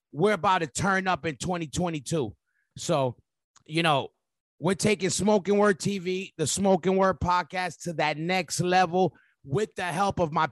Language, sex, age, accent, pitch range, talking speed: English, male, 30-49, American, 160-200 Hz, 160 wpm